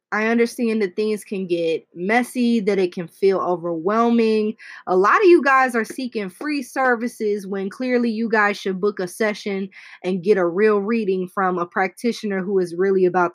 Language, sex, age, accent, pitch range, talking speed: English, female, 20-39, American, 195-240 Hz, 185 wpm